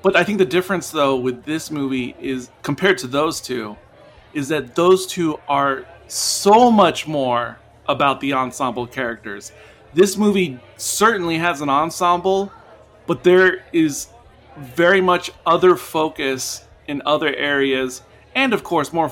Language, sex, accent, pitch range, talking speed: English, male, American, 130-170 Hz, 145 wpm